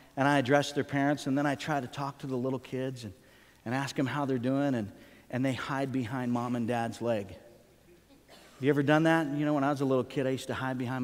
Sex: male